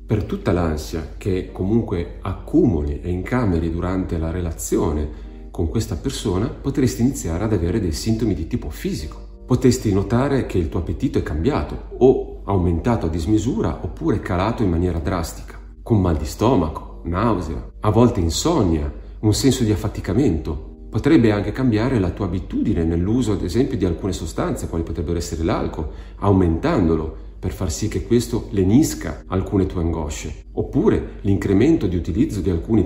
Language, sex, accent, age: Italian, male, native, 40-59